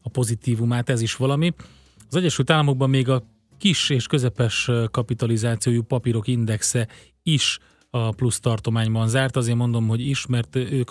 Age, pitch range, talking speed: 30-49, 110-125 Hz, 150 wpm